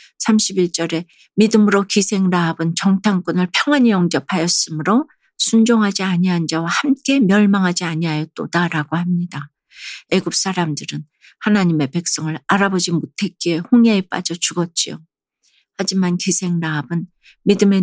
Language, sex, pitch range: Korean, female, 160-195 Hz